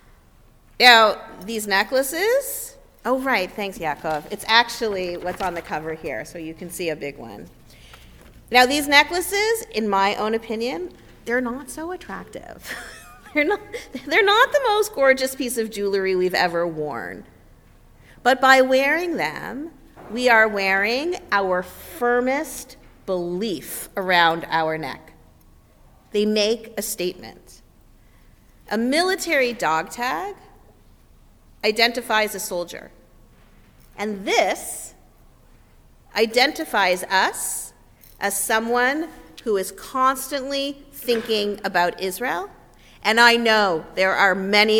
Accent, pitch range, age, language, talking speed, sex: American, 180-255 Hz, 40-59, English, 115 wpm, female